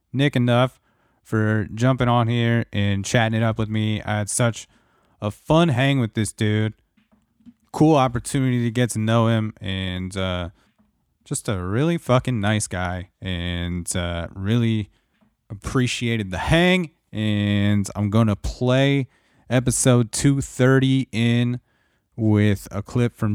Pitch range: 100-120 Hz